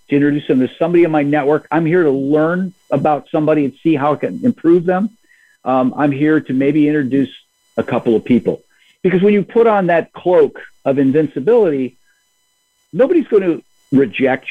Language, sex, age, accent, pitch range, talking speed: English, male, 50-69, American, 130-170 Hz, 180 wpm